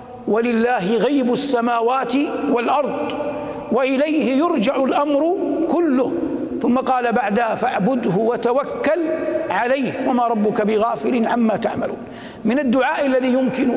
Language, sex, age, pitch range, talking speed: Arabic, male, 60-79, 225-265 Hz, 100 wpm